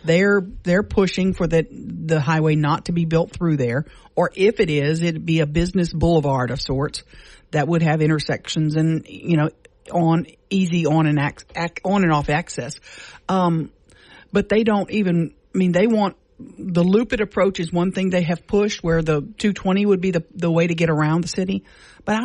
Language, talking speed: English, 195 wpm